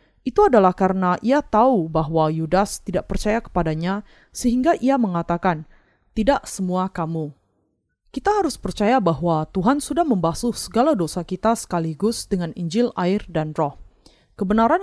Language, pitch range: Indonesian, 170-230 Hz